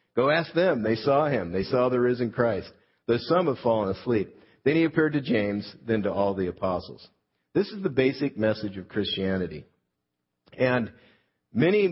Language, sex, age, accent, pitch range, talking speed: English, male, 50-69, American, 95-120 Hz, 175 wpm